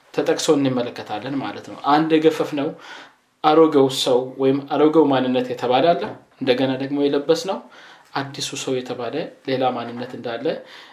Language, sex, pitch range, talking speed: Amharic, male, 135-165 Hz, 125 wpm